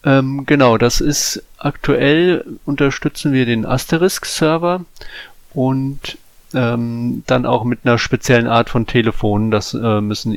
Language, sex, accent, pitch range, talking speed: German, male, German, 100-125 Hz, 120 wpm